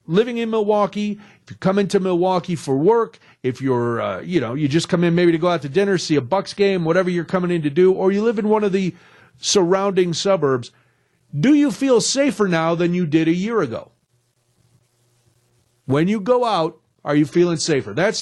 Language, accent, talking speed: English, American, 210 wpm